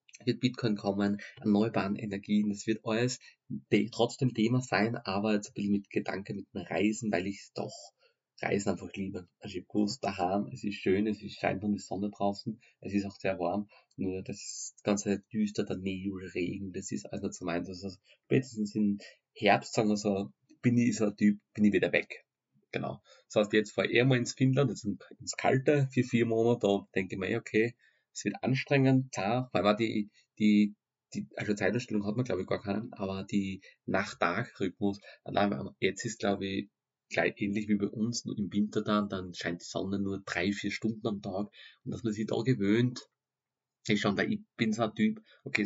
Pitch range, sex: 100-110 Hz, male